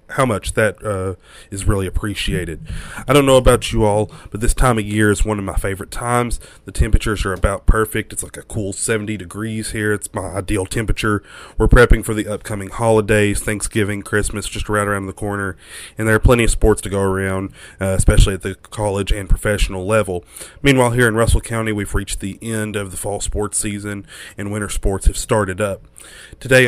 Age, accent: 30-49, American